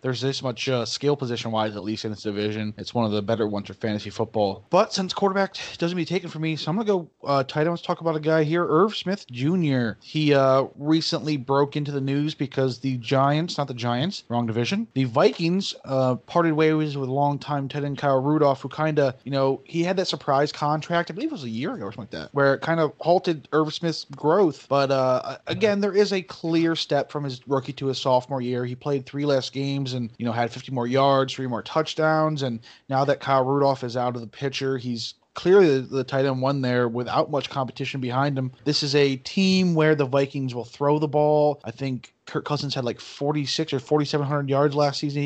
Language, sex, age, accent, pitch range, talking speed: English, male, 20-39, American, 130-155 Hz, 235 wpm